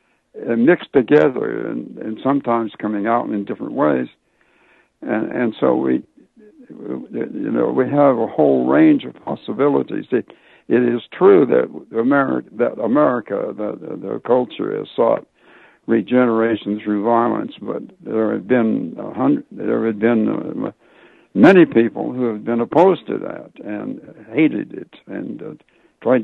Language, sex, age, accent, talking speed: English, male, 60-79, American, 145 wpm